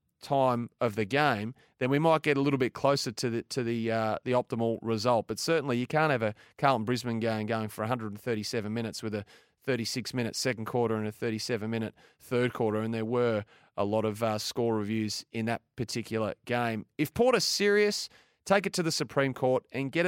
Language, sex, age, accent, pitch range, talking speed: English, male, 30-49, Australian, 110-135 Hz, 200 wpm